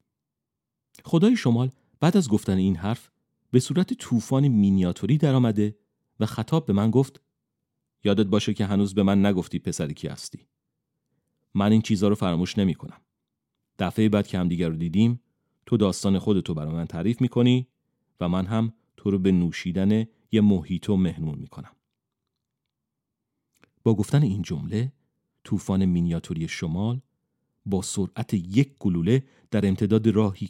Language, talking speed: Persian, 150 wpm